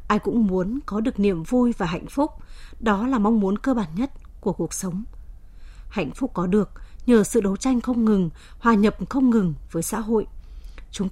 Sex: female